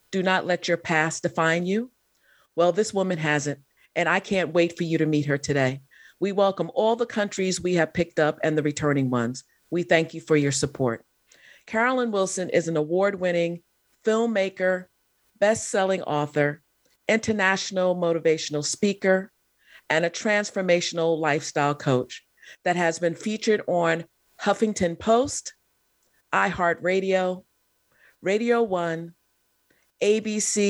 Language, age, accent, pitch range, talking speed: English, 40-59, American, 155-190 Hz, 135 wpm